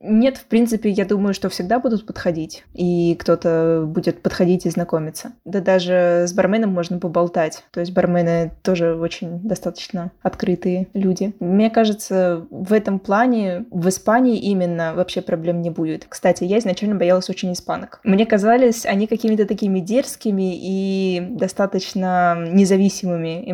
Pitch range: 180-205 Hz